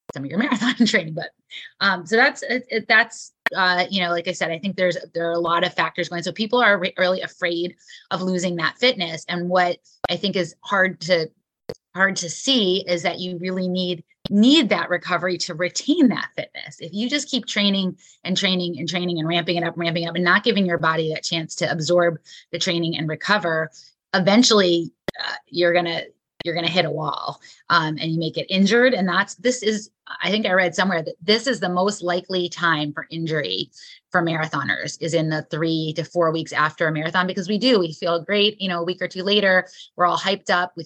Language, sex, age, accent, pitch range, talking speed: English, female, 20-39, American, 165-195 Hz, 220 wpm